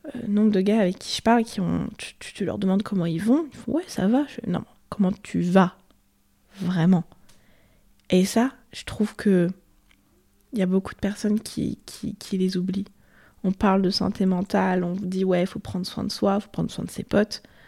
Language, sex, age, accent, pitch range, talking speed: French, female, 20-39, French, 185-220 Hz, 225 wpm